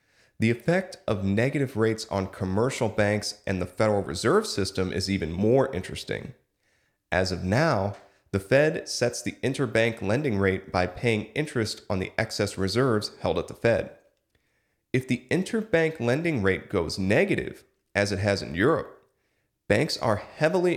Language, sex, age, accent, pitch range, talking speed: English, male, 40-59, American, 100-130 Hz, 155 wpm